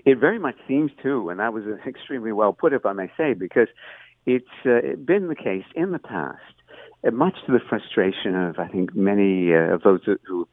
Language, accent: English, American